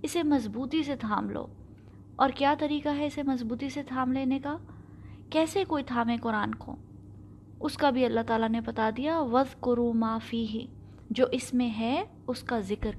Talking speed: 175 wpm